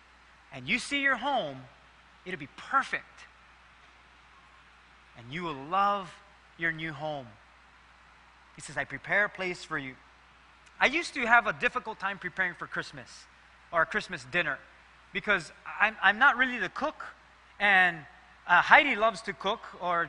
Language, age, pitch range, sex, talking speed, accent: English, 30-49, 190-255 Hz, male, 150 wpm, American